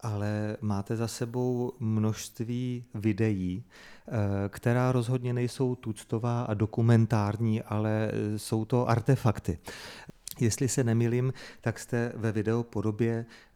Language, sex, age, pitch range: Czech, male, 40-59, 110-125 Hz